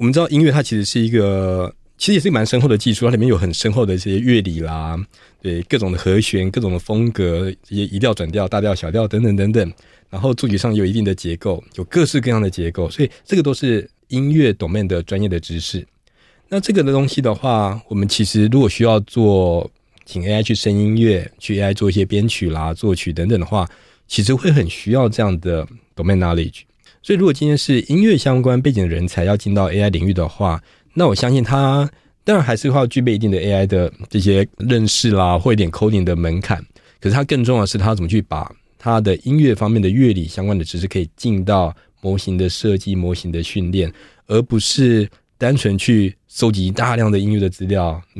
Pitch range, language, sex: 95-120 Hz, Chinese, male